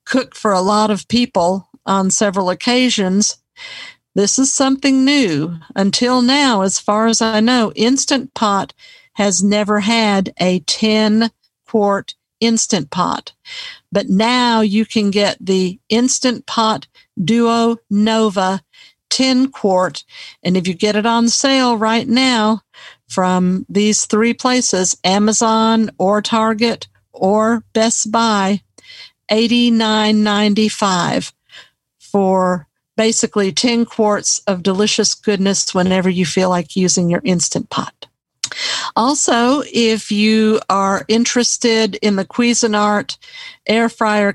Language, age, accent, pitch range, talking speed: English, 50-69, American, 195-235 Hz, 120 wpm